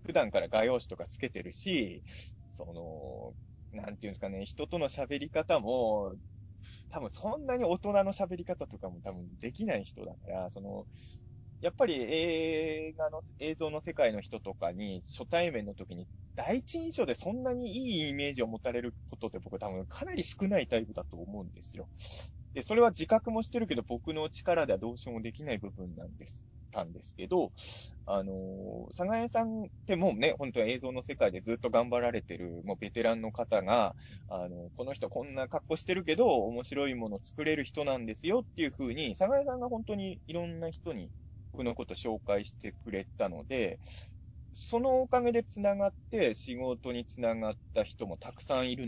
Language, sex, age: Japanese, male, 20-39